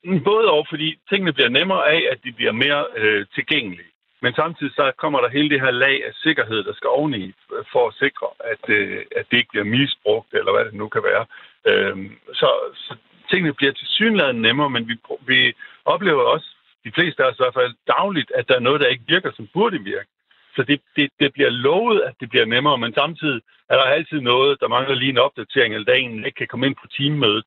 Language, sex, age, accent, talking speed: Danish, male, 60-79, native, 225 wpm